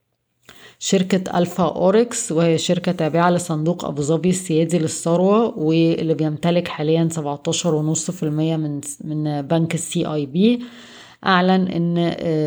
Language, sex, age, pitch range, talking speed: Arabic, female, 20-39, 160-180 Hz, 100 wpm